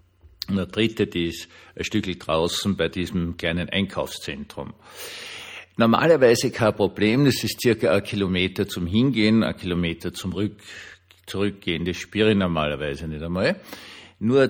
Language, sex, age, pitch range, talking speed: German, male, 50-69, 85-100 Hz, 140 wpm